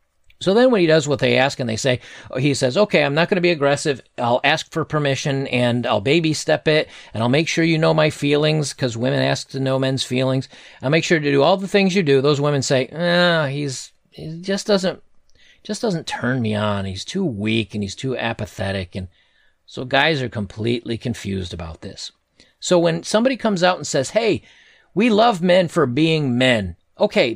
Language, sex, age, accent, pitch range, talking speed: English, male, 40-59, American, 120-170 Hz, 215 wpm